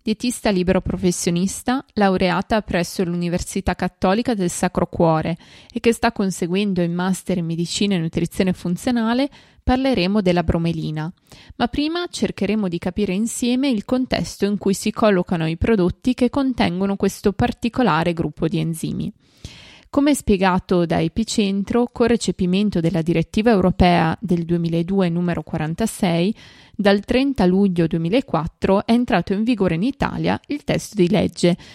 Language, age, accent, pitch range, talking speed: Italian, 20-39, native, 170-230 Hz, 135 wpm